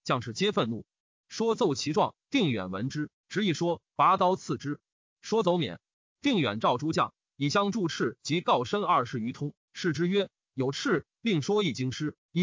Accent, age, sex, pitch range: native, 30-49, male, 150-220 Hz